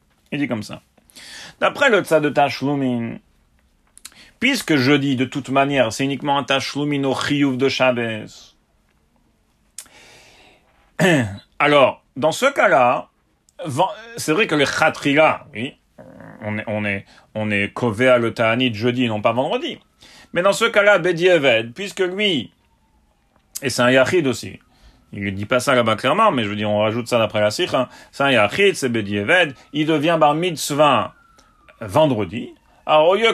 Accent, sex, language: French, male, English